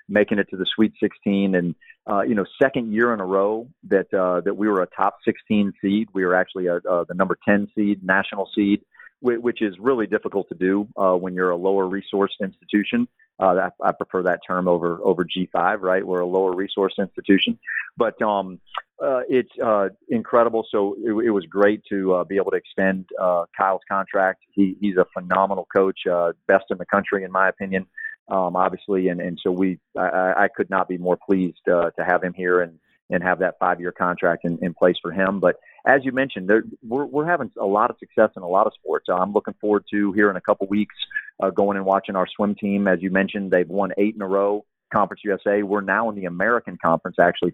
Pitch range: 90-105 Hz